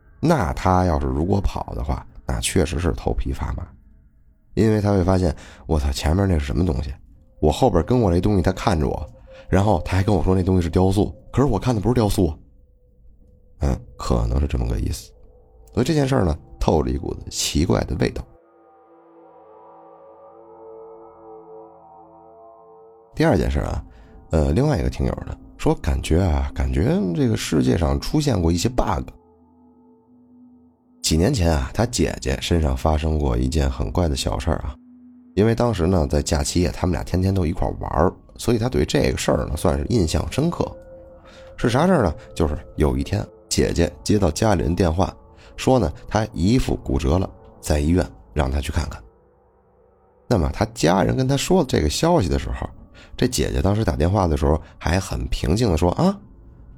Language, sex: Chinese, male